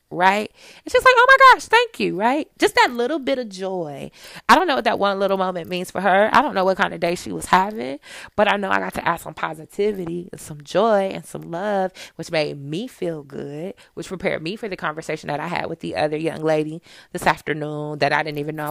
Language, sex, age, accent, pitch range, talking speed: English, female, 20-39, American, 150-200 Hz, 250 wpm